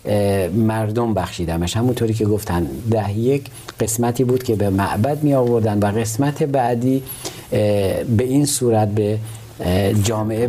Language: Persian